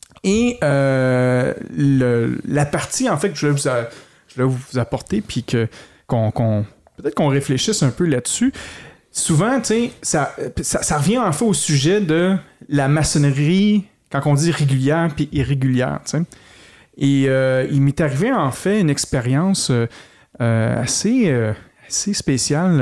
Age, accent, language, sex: 30-49, Canadian, French, male